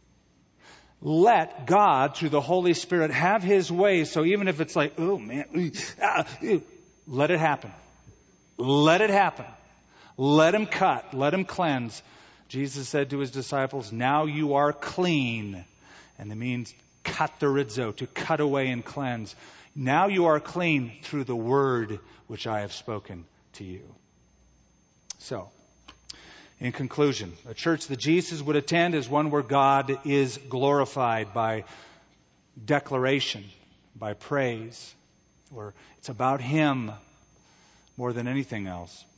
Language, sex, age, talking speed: English, male, 40-59, 140 wpm